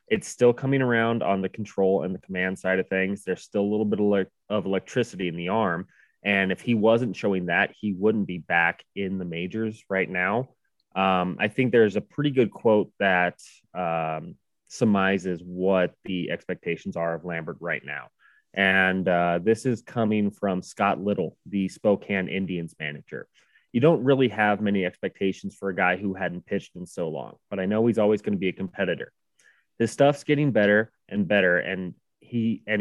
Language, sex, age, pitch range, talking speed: English, male, 20-39, 95-115 Hz, 190 wpm